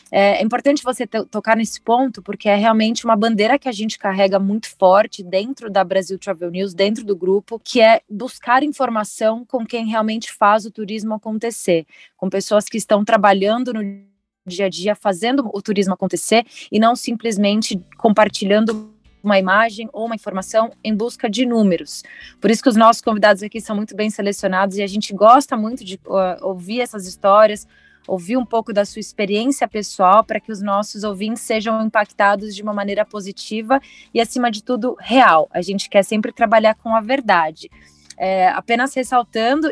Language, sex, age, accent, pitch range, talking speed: Portuguese, female, 20-39, Brazilian, 200-230 Hz, 175 wpm